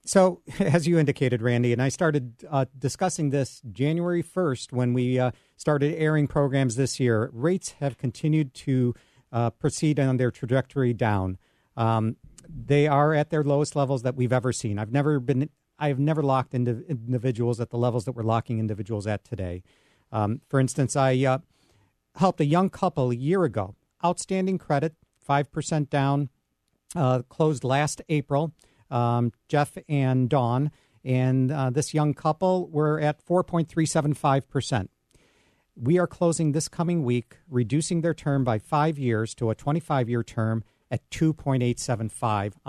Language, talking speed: English, 155 wpm